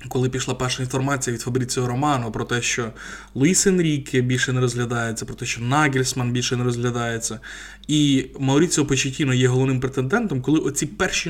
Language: Ukrainian